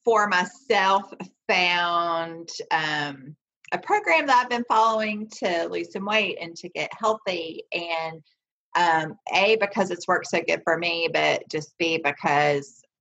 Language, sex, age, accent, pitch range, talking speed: English, female, 40-59, American, 150-200 Hz, 150 wpm